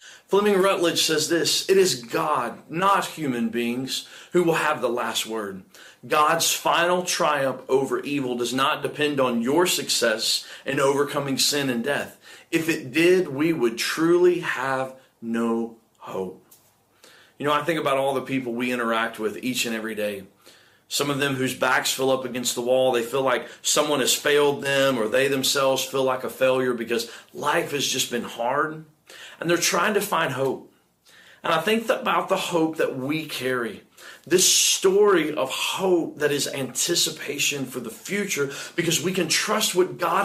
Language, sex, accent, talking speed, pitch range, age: English, male, American, 175 wpm, 130-180 Hz, 40-59